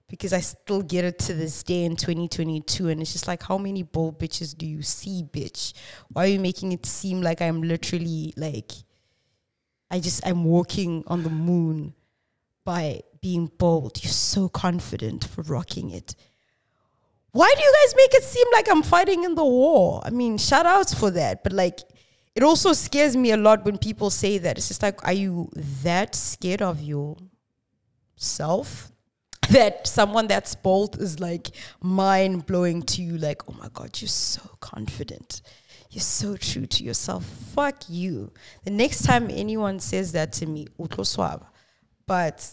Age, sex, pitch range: 20-39, female, 155-205 Hz